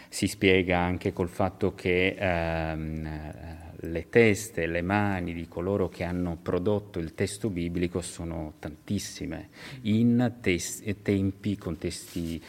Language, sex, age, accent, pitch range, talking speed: Italian, male, 30-49, native, 85-100 Hz, 120 wpm